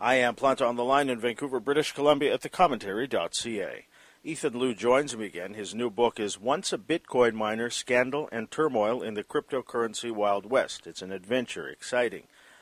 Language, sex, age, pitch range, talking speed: English, male, 50-69, 95-120 Hz, 175 wpm